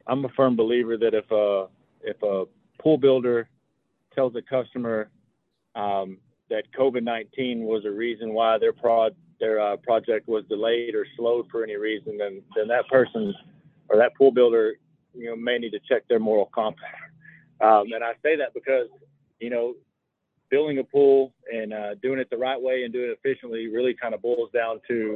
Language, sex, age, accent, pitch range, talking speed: English, male, 40-59, American, 110-130 Hz, 185 wpm